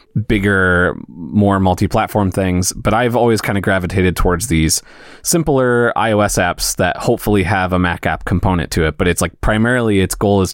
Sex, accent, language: male, American, English